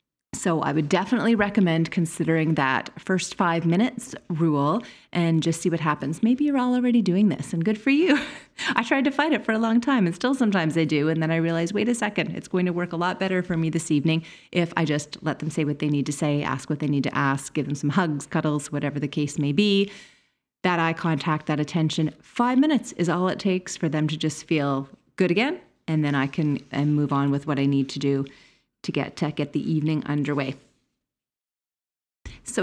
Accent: American